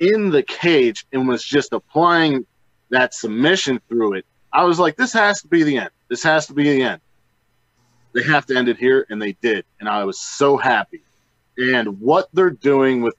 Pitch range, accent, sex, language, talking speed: 115-140 Hz, American, male, English, 205 wpm